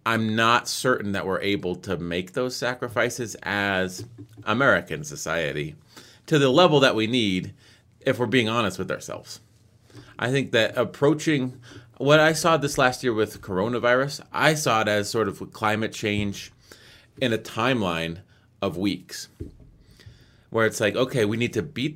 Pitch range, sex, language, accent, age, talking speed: 100-125 Hz, male, English, American, 30-49, 160 wpm